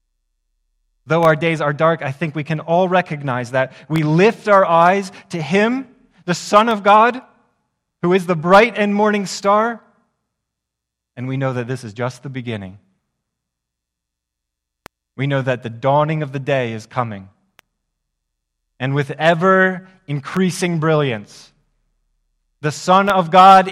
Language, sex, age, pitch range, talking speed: English, male, 30-49, 120-180 Hz, 140 wpm